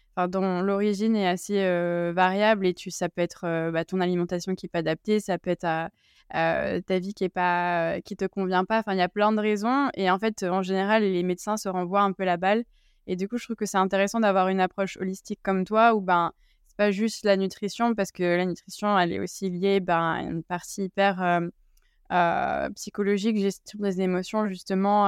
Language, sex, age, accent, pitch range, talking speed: French, female, 20-39, French, 180-210 Hz, 225 wpm